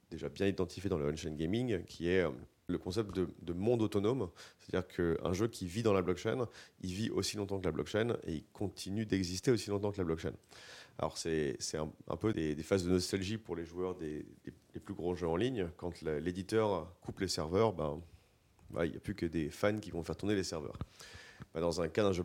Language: French